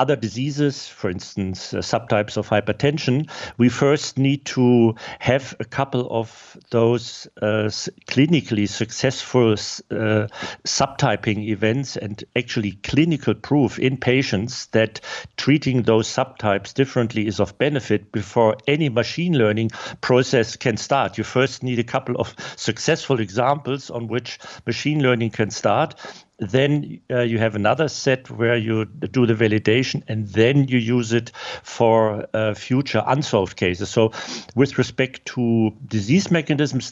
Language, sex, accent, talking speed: English, male, German, 140 wpm